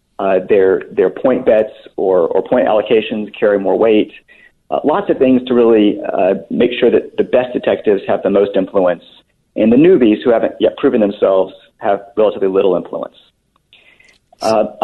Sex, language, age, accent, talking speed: male, English, 40-59, American, 170 wpm